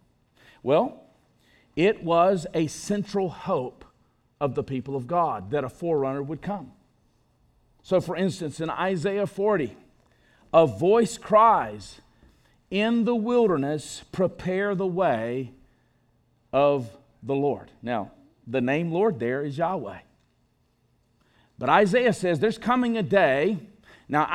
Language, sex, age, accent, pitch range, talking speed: English, male, 50-69, American, 140-200 Hz, 120 wpm